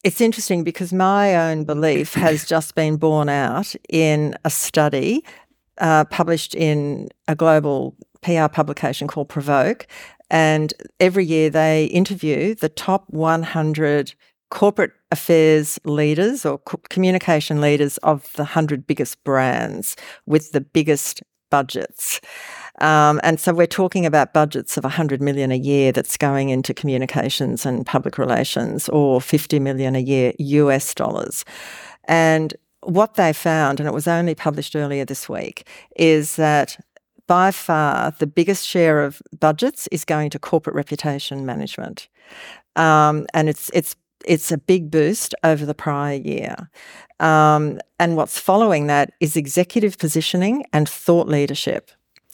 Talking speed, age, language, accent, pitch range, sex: 140 wpm, 50-69, English, Australian, 150-175 Hz, female